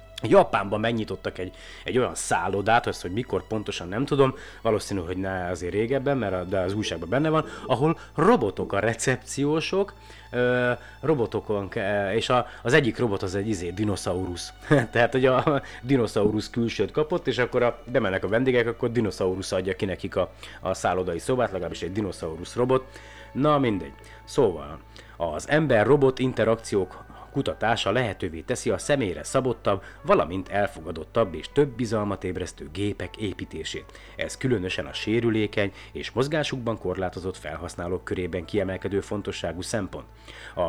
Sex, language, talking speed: male, Hungarian, 145 wpm